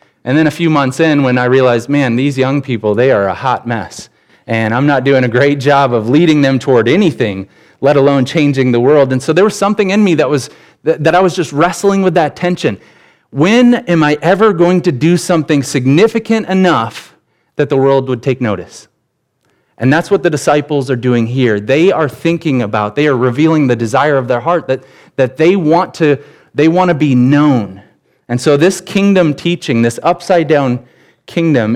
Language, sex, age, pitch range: English, male, 30-49, 125-160 Hz